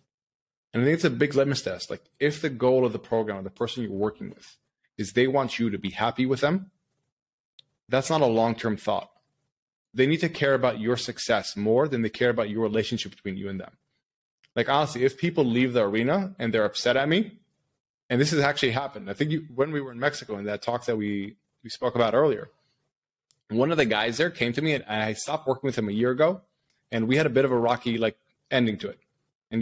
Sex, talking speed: male, 235 wpm